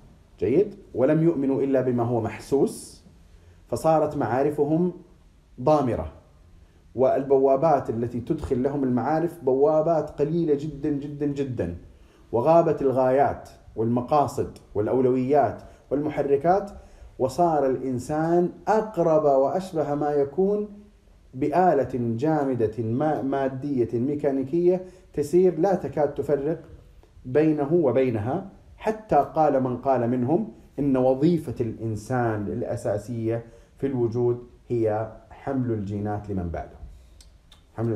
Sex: male